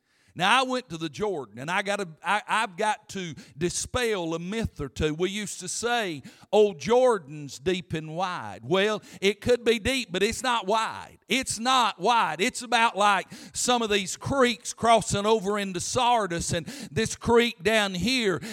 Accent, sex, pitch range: American, male, 190-245 Hz